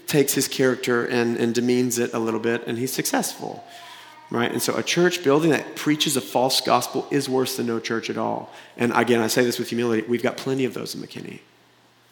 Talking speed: 225 wpm